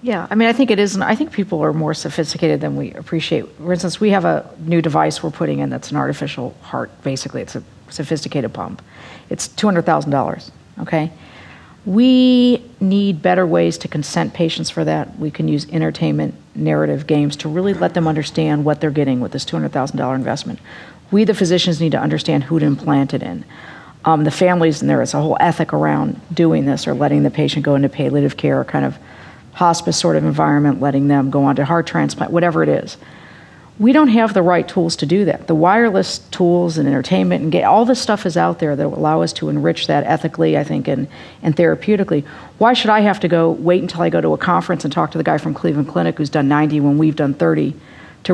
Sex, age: female, 50-69